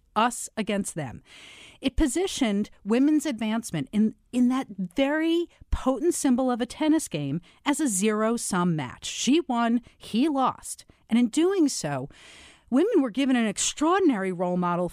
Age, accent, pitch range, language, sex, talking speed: 50-69, American, 185-270 Hz, English, female, 145 wpm